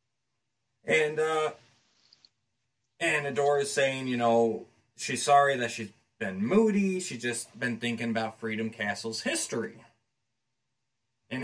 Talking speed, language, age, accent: 115 wpm, English, 30-49, American